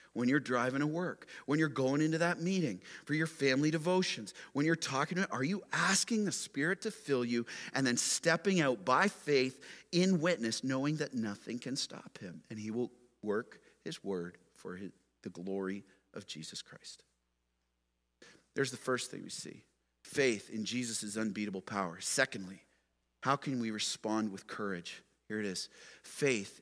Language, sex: English, male